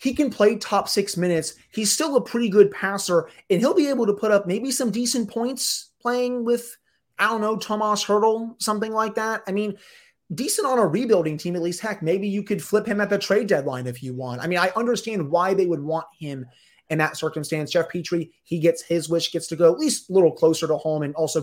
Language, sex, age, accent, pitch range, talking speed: English, male, 30-49, American, 155-205 Hz, 240 wpm